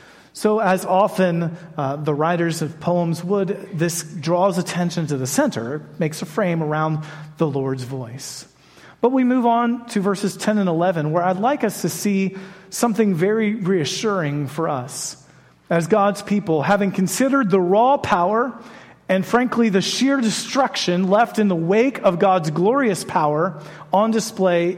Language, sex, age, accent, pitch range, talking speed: English, male, 40-59, American, 160-215 Hz, 155 wpm